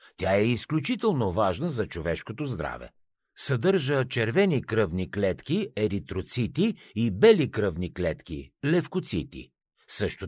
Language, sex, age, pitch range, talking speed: Bulgarian, male, 50-69, 95-155 Hz, 115 wpm